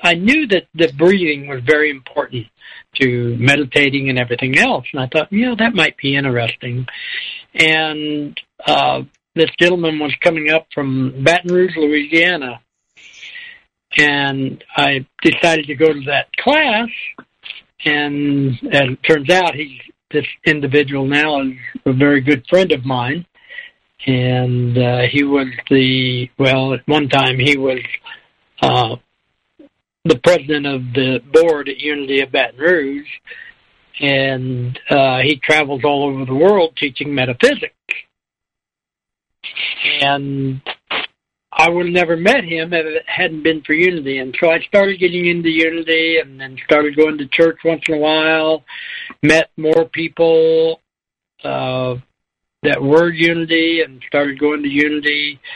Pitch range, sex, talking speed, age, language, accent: 135-165 Hz, male, 145 wpm, 60-79, English, American